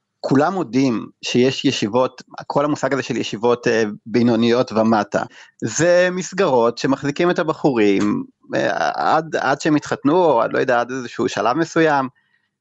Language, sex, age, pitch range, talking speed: Hebrew, male, 30-49, 120-155 Hz, 140 wpm